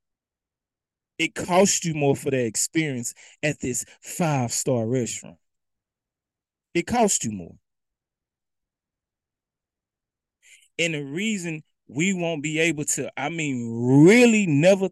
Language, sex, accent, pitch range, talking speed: English, male, American, 120-175 Hz, 110 wpm